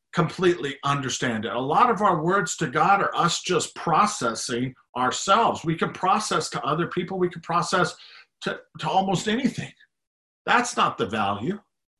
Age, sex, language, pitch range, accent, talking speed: 50-69, male, English, 135-190 Hz, American, 160 wpm